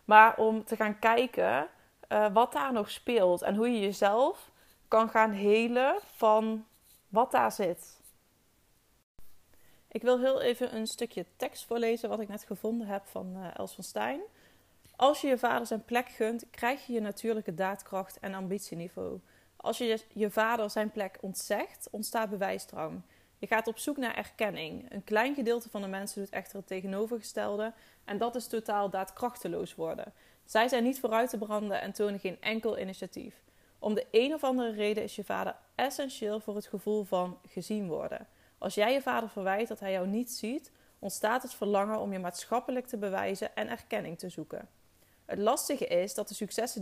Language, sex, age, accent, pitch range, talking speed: Dutch, female, 20-39, Dutch, 200-235 Hz, 180 wpm